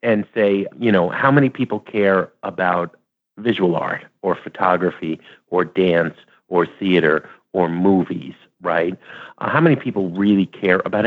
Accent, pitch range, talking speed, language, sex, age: American, 90-125 Hz, 145 wpm, English, male, 50-69